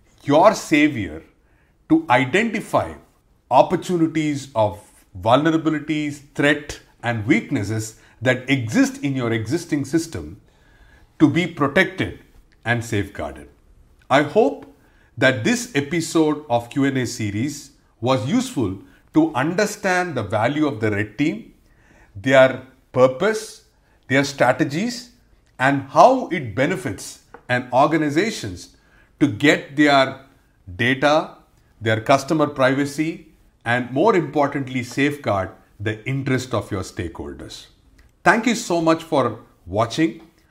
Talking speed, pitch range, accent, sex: 105 wpm, 115-160 Hz, Indian, male